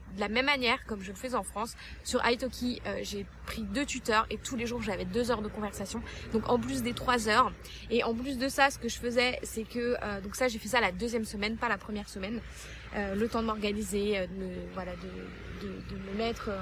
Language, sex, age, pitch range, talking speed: French, female, 20-39, 205-250 Hz, 255 wpm